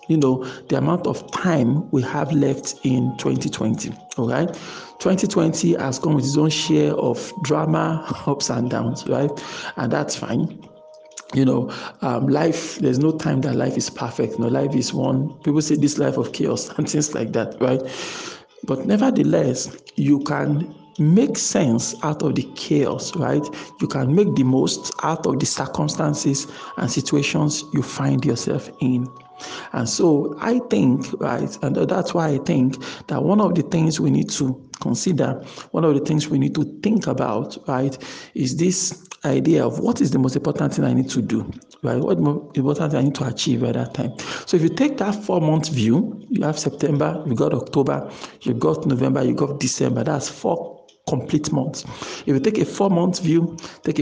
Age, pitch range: 50-69, 135-165 Hz